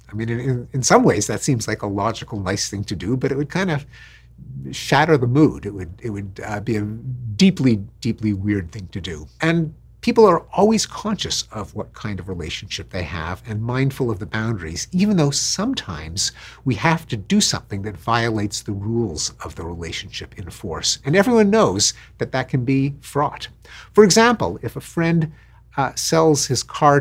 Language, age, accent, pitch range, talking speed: English, 50-69, American, 105-155 Hz, 190 wpm